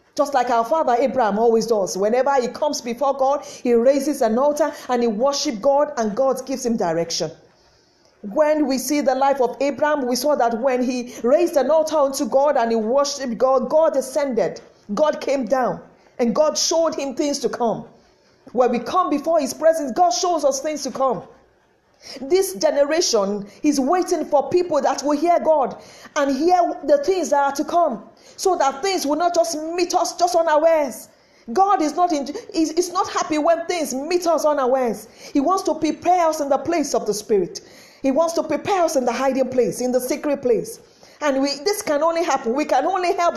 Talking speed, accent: 200 wpm, Nigerian